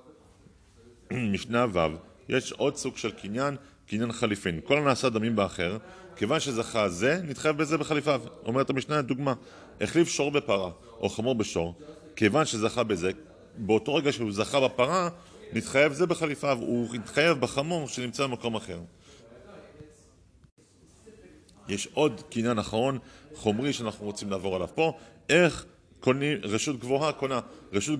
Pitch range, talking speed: 100-145 Hz, 130 wpm